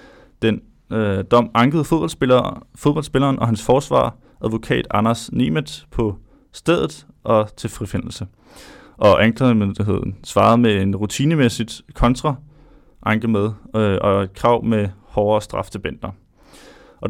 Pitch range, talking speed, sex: 110-135 Hz, 120 wpm, male